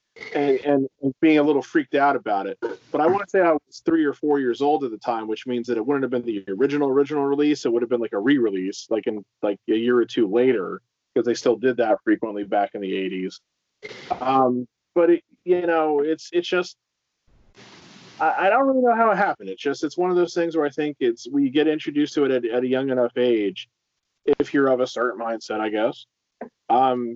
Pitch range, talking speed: 120-155 Hz, 235 wpm